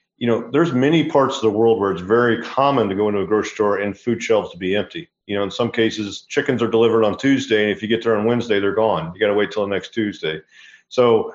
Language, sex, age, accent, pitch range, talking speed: English, male, 40-59, American, 110-130 Hz, 275 wpm